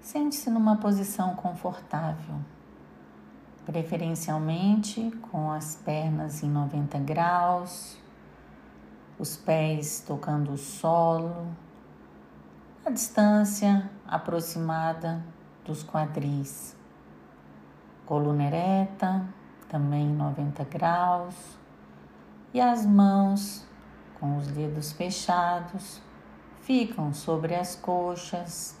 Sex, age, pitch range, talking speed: female, 50-69, 150-195 Hz, 80 wpm